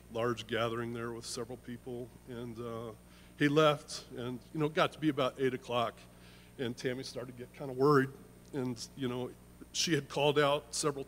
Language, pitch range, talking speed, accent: English, 125-150 Hz, 190 wpm, American